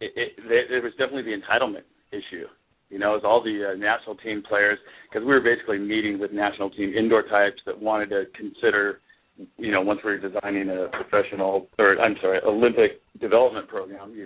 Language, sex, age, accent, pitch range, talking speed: English, male, 40-59, American, 105-140 Hz, 190 wpm